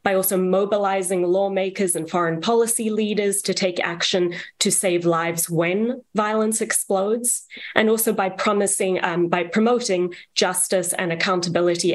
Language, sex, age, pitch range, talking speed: English, female, 30-49, 175-215 Hz, 135 wpm